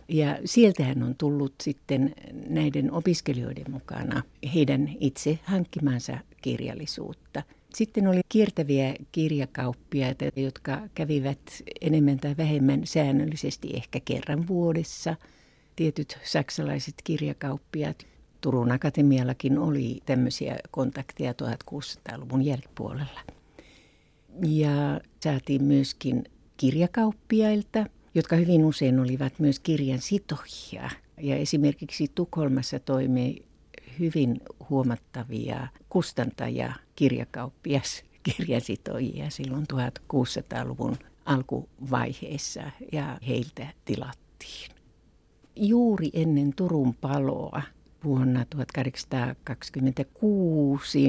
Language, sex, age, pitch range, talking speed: Finnish, female, 60-79, 130-155 Hz, 80 wpm